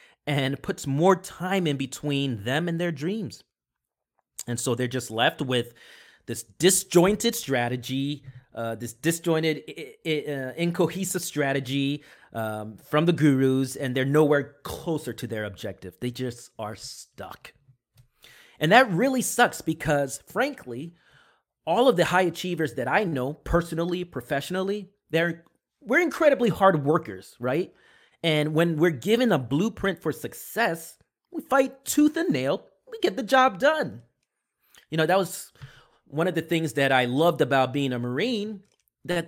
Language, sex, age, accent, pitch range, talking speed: English, male, 30-49, American, 130-180 Hz, 150 wpm